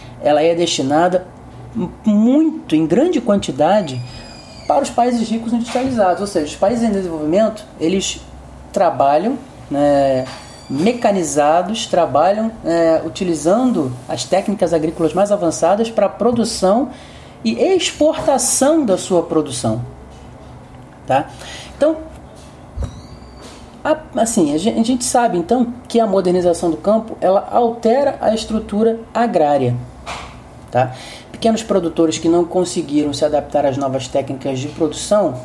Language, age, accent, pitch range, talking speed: Portuguese, 40-59, Brazilian, 145-210 Hz, 115 wpm